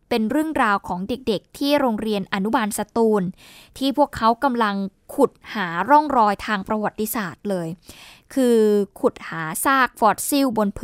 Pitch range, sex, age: 215-280 Hz, female, 20-39